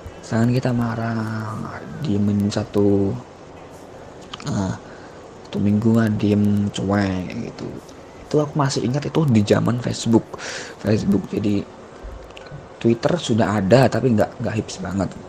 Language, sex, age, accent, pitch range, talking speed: Indonesian, male, 20-39, native, 100-115 Hz, 130 wpm